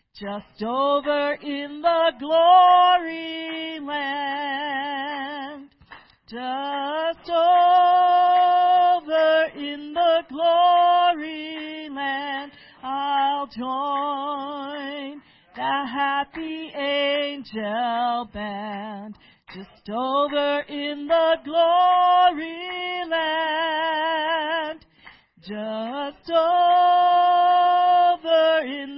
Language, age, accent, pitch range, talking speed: English, 40-59, American, 275-325 Hz, 55 wpm